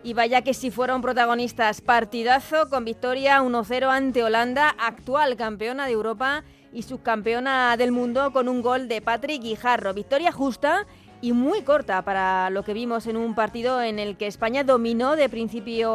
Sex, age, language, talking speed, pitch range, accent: female, 20-39, Spanish, 170 wpm, 225-270 Hz, Spanish